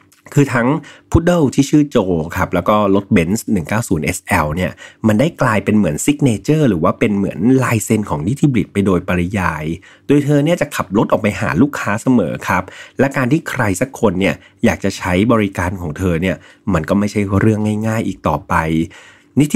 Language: Thai